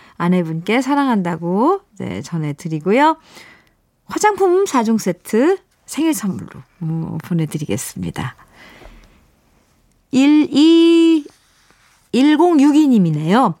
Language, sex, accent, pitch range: Korean, female, native, 195-300 Hz